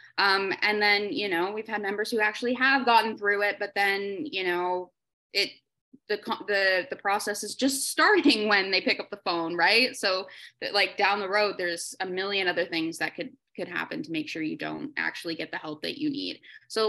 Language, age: English, 20-39